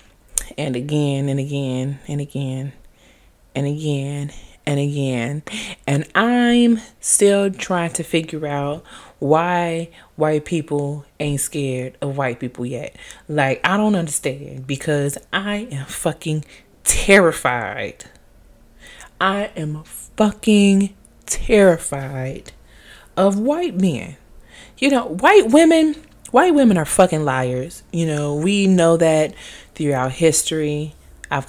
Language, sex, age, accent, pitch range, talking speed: English, female, 20-39, American, 140-180 Hz, 110 wpm